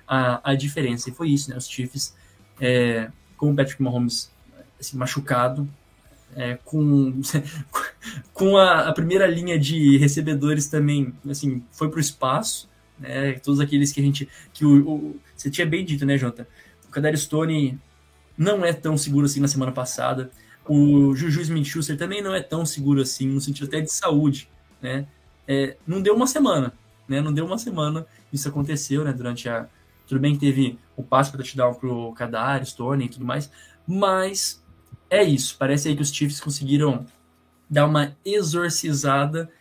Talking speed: 175 wpm